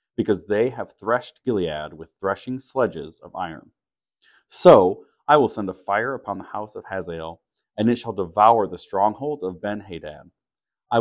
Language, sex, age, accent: English, male, 30-49, American